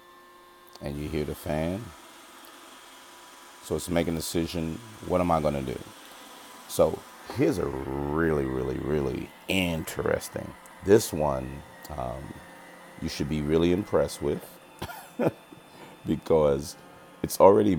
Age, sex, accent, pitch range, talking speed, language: 40-59, male, American, 75-90 Hz, 120 wpm, English